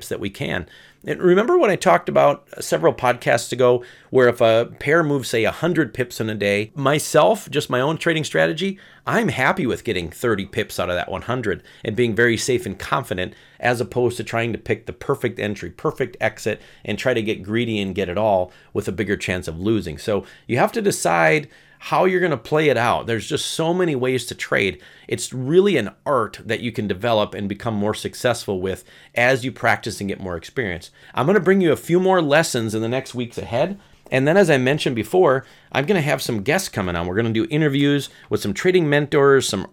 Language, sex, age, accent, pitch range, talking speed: English, male, 40-59, American, 110-155 Hz, 220 wpm